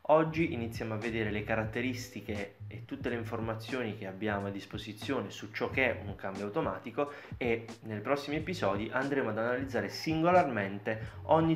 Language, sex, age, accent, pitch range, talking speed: Italian, male, 20-39, native, 100-135 Hz, 155 wpm